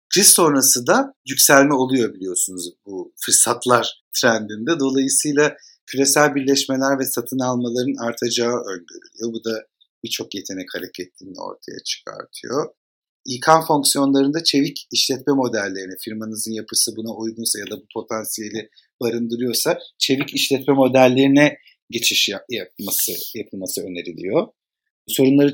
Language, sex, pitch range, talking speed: Turkish, male, 110-140 Hz, 110 wpm